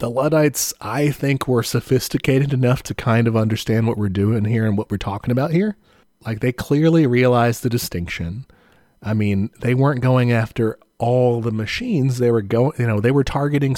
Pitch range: 105-125 Hz